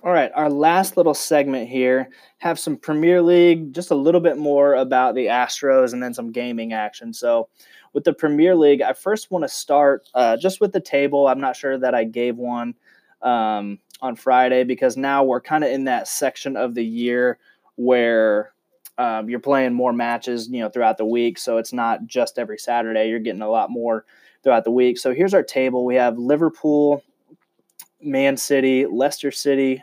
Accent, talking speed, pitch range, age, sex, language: American, 195 wpm, 120-140 Hz, 20-39, male, English